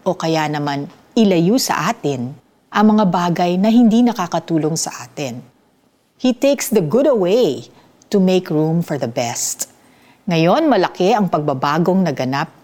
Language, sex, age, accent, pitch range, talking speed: Filipino, female, 50-69, native, 150-225 Hz, 140 wpm